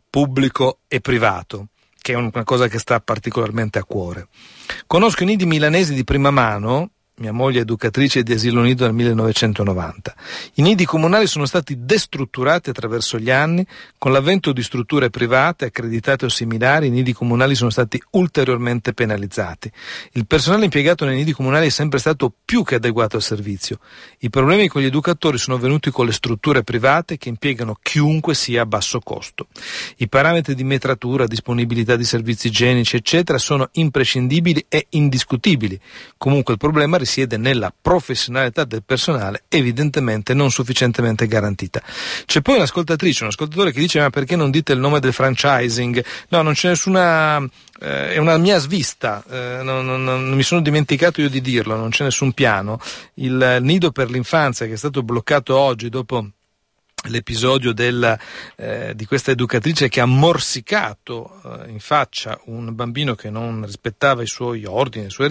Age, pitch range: 50-69, 120-150 Hz